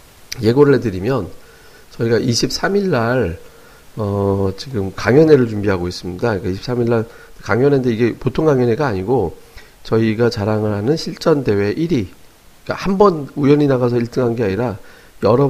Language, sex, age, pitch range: Korean, male, 40-59, 100-135 Hz